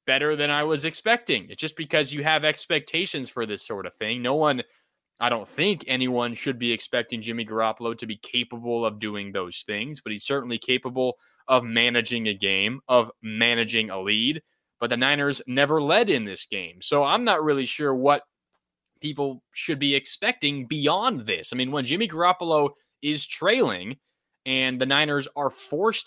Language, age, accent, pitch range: English, 20-39, American, 115-150 Hz